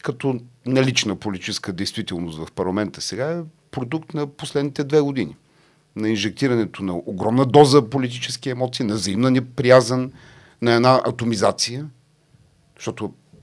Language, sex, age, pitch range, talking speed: English, male, 40-59, 115-140 Hz, 120 wpm